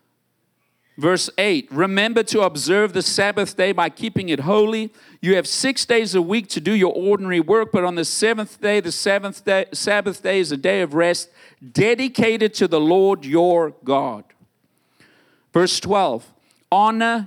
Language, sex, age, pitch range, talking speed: English, male, 50-69, 140-200 Hz, 165 wpm